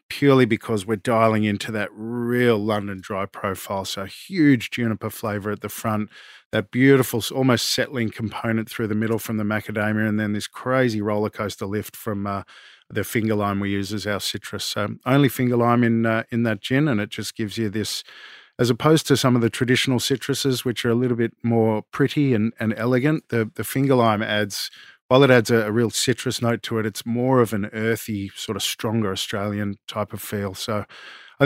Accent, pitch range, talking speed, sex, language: Australian, 105-125 Hz, 205 wpm, male, English